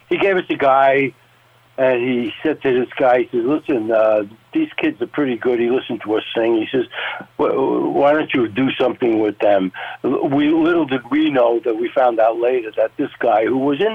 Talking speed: 220 wpm